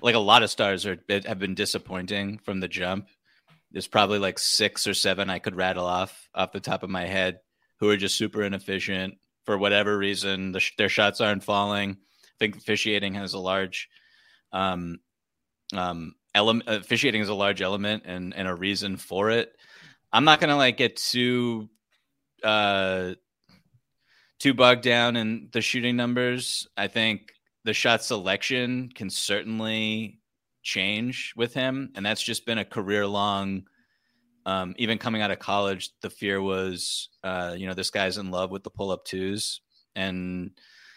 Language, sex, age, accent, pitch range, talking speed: English, male, 30-49, American, 95-110 Hz, 165 wpm